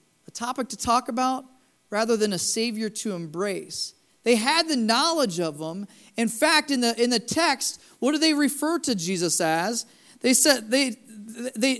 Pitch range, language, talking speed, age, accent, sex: 200-245 Hz, English, 180 wpm, 40-59, American, male